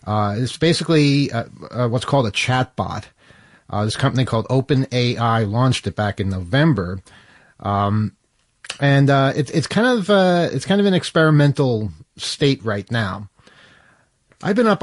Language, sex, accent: English, male, American